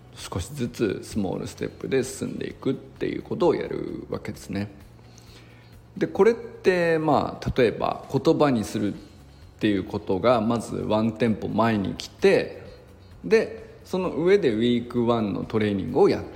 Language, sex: Japanese, male